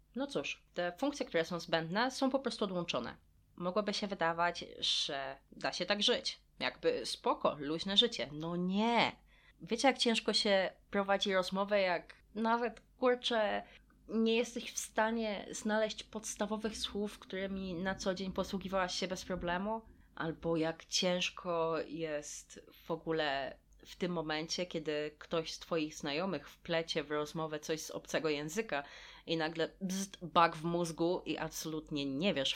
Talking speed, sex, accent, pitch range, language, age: 145 wpm, female, native, 155-210 Hz, Polish, 20-39